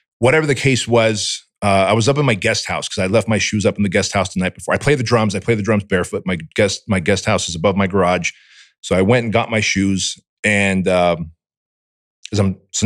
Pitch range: 95-120 Hz